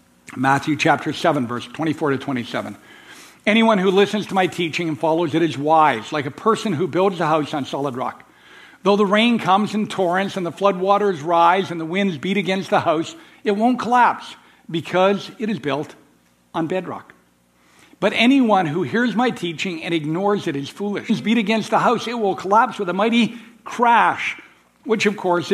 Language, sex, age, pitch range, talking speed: English, male, 60-79, 175-230 Hz, 195 wpm